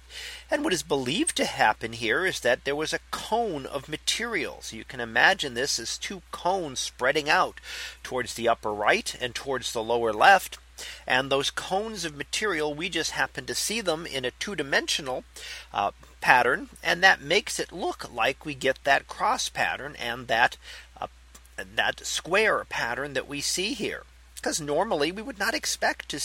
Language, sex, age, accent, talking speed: English, male, 40-59, American, 180 wpm